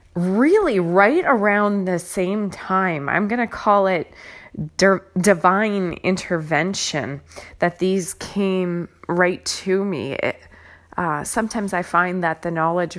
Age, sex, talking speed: 20-39, female, 130 wpm